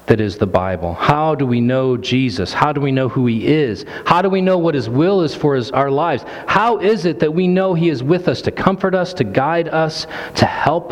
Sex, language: male, English